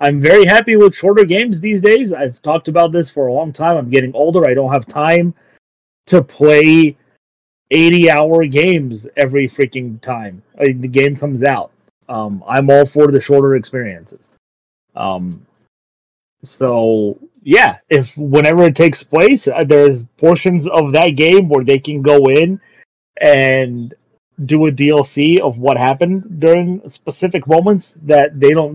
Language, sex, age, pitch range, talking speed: English, male, 30-49, 130-165 Hz, 155 wpm